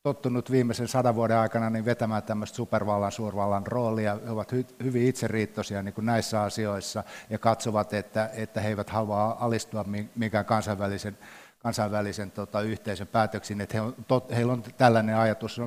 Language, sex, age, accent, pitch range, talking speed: Finnish, male, 60-79, native, 105-115 Hz, 130 wpm